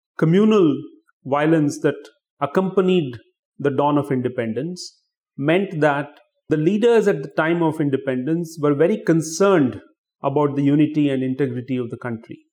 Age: 30-49